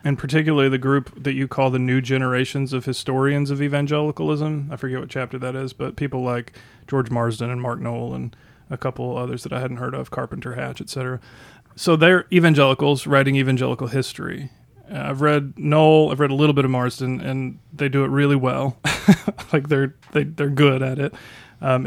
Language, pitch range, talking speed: English, 125-145 Hz, 190 wpm